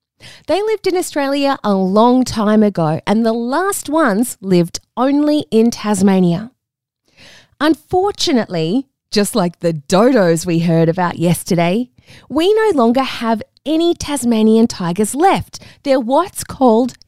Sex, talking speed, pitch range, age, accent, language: female, 125 wpm, 175-285 Hz, 20-39, Australian, English